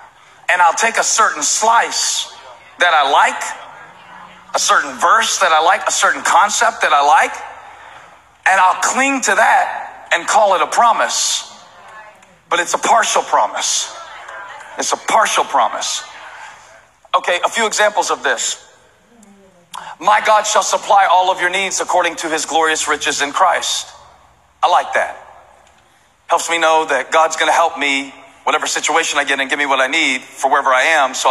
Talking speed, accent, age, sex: 170 wpm, American, 40-59, male